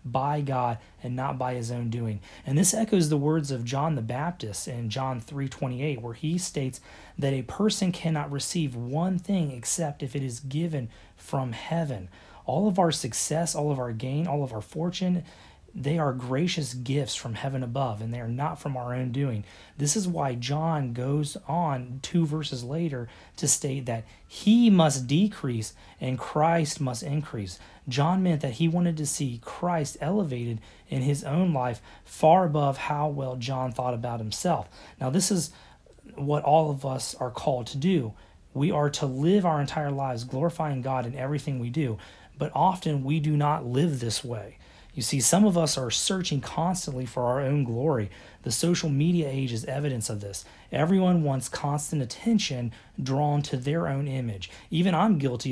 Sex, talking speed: male, 185 wpm